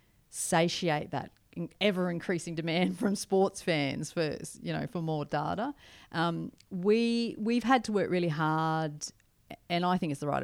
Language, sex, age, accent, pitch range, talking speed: English, female, 40-59, Australian, 150-180 Hz, 160 wpm